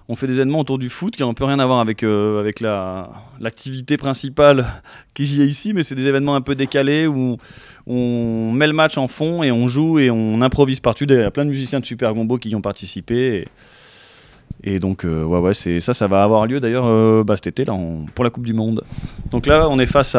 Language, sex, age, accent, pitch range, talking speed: French, male, 20-39, French, 110-140 Hz, 250 wpm